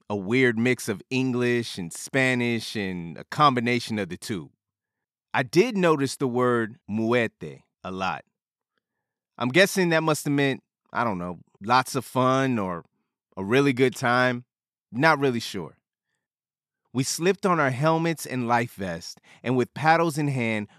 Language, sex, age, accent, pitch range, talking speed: English, male, 30-49, American, 115-150 Hz, 155 wpm